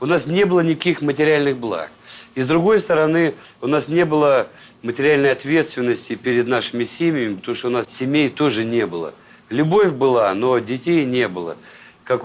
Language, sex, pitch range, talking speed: Russian, male, 120-155 Hz, 170 wpm